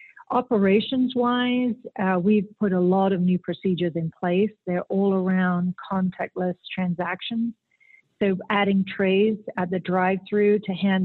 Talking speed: 125 wpm